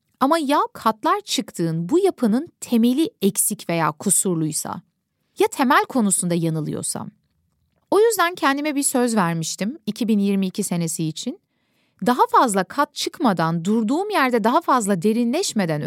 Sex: female